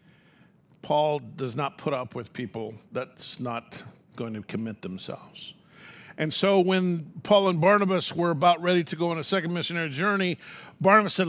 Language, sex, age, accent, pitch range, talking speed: English, male, 50-69, American, 140-195 Hz, 165 wpm